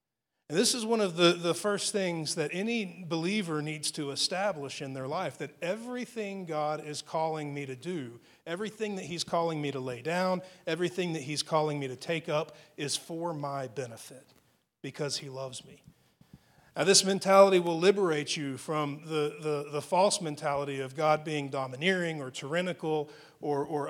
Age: 40-59